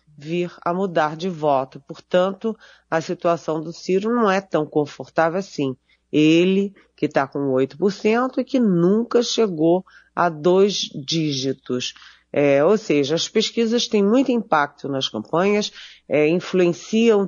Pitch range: 145-185 Hz